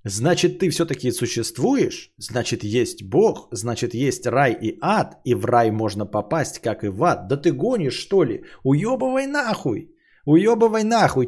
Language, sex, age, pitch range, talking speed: Bulgarian, male, 30-49, 110-140 Hz, 160 wpm